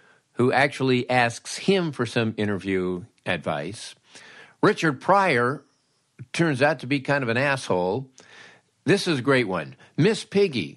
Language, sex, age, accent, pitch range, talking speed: English, male, 50-69, American, 115-150 Hz, 140 wpm